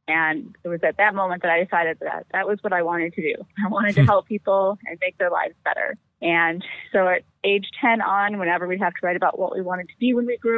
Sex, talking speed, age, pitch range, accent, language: female, 265 wpm, 20-39, 175-205 Hz, American, English